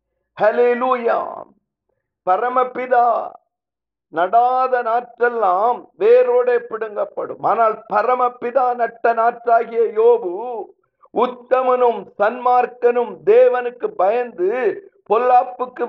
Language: Tamil